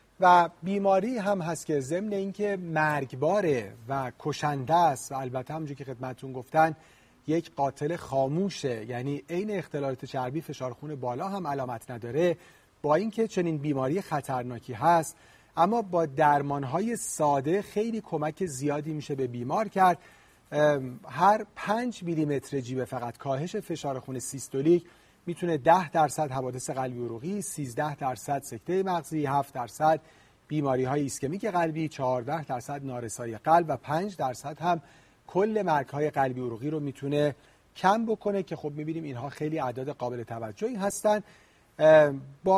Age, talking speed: 40-59, 140 wpm